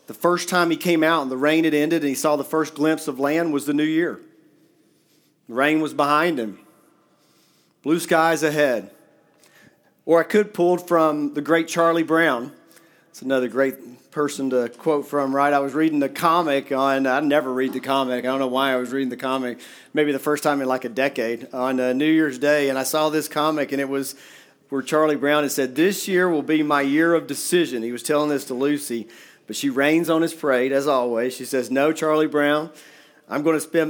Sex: male